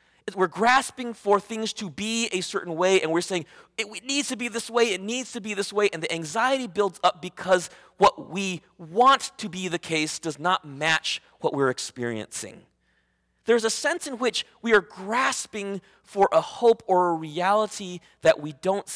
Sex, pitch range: male, 135-210 Hz